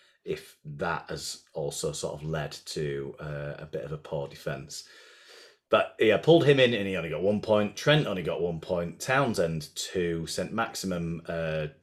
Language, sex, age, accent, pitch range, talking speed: English, male, 30-49, British, 85-110 Hz, 185 wpm